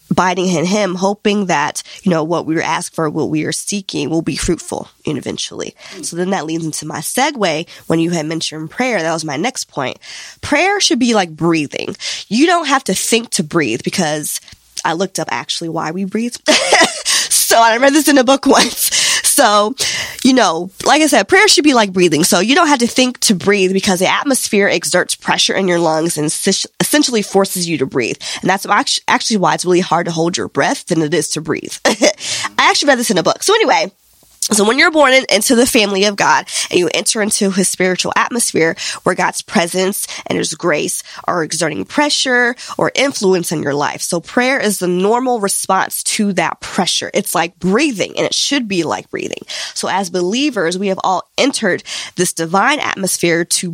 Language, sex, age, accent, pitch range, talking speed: English, female, 20-39, American, 170-240 Hz, 205 wpm